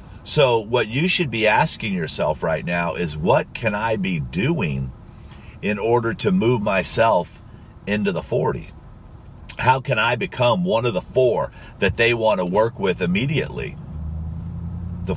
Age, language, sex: 50-69, English, male